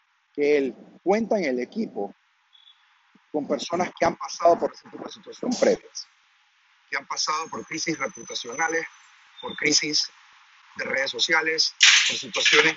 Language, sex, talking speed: Spanish, male, 125 wpm